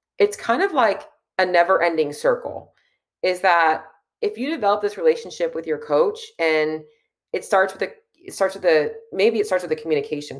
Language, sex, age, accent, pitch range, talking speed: English, female, 30-49, American, 165-215 Hz, 190 wpm